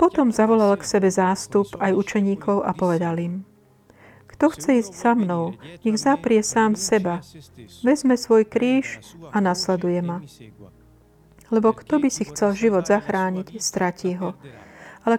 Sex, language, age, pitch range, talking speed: female, Slovak, 40-59, 175-225 Hz, 140 wpm